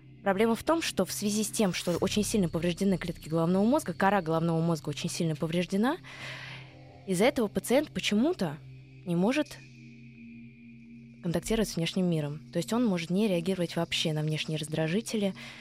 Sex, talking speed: female, 160 wpm